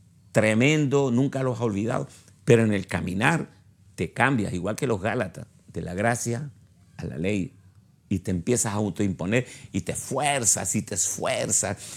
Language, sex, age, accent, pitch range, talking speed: Spanish, male, 50-69, Mexican, 100-130 Hz, 160 wpm